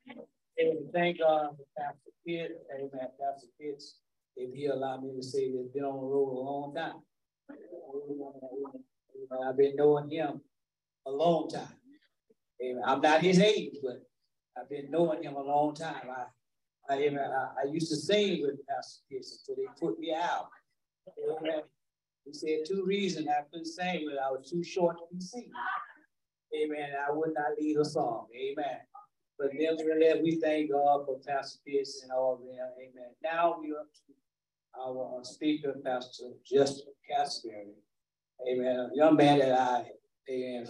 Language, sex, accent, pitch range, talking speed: English, male, American, 130-160 Hz, 165 wpm